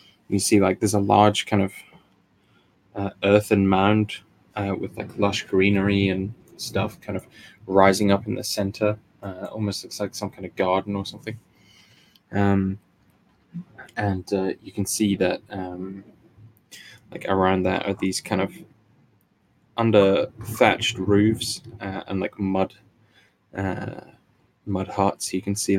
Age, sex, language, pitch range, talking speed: 10-29, male, English, 95-105 Hz, 140 wpm